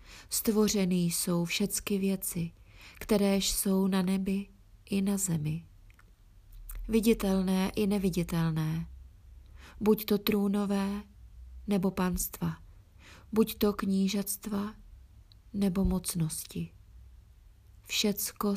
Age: 30-49